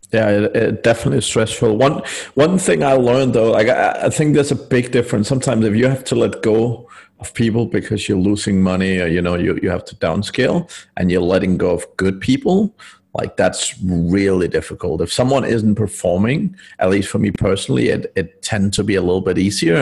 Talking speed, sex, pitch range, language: 210 wpm, male, 95-115 Hz, English